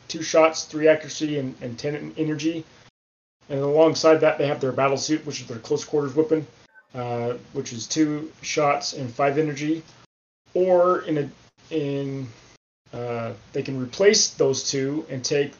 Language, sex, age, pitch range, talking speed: English, male, 30-49, 130-155 Hz, 160 wpm